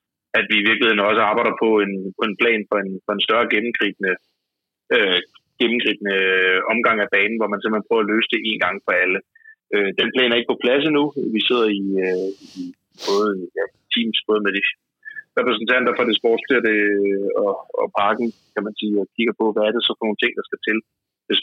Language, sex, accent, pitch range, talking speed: Danish, male, native, 105-140 Hz, 215 wpm